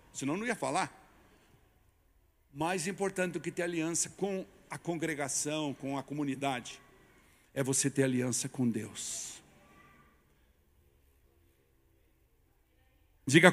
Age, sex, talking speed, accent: 60-79, male, 100 wpm, Brazilian